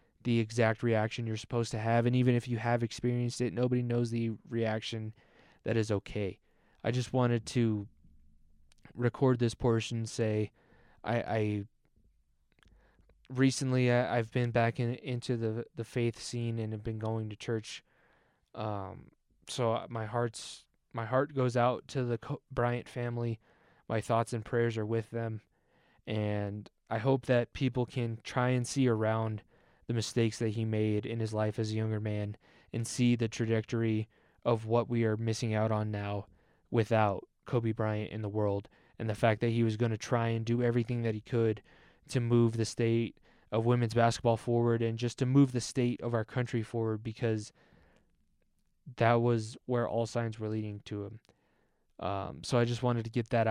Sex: male